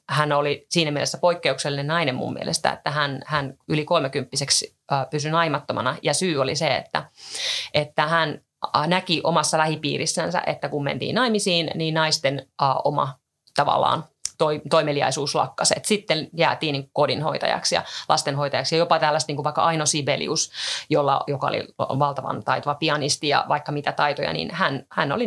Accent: native